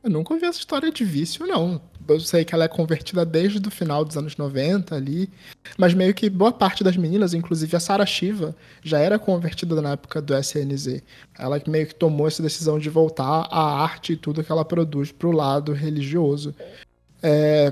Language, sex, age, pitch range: Portuguese, male, 20-39, 150-185 Hz